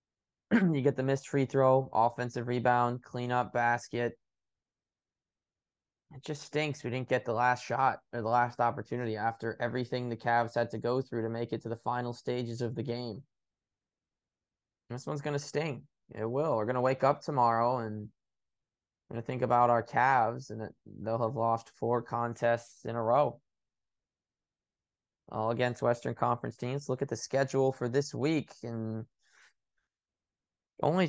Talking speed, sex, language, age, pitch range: 165 wpm, male, English, 20-39, 115-140 Hz